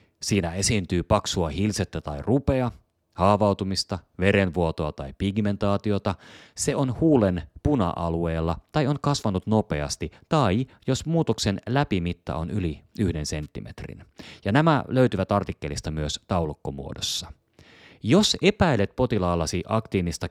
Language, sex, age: Finnish, male, 30-49